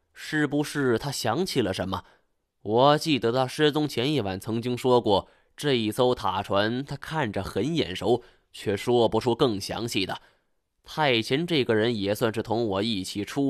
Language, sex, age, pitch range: Chinese, male, 20-39, 110-145 Hz